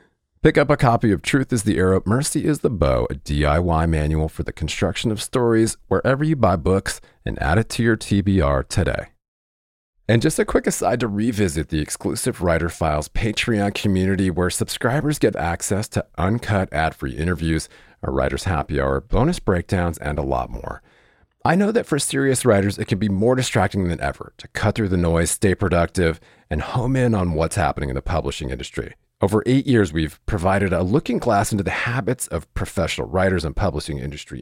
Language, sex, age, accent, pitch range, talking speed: English, male, 40-59, American, 80-110 Hz, 190 wpm